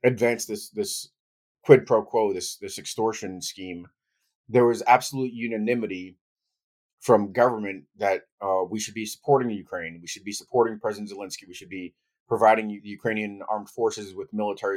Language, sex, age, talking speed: English, male, 30-49, 160 wpm